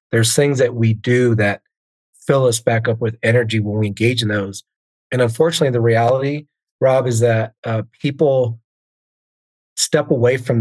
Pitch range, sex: 110-125 Hz, male